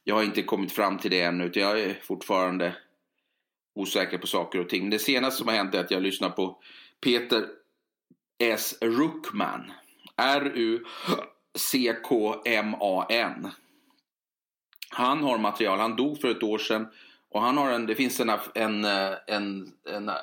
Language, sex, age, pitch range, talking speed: English, male, 30-49, 100-125 Hz, 155 wpm